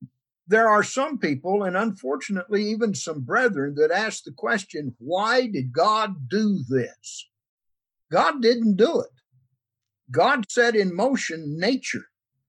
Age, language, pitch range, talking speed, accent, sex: 60-79, English, 145-215 Hz, 130 wpm, American, male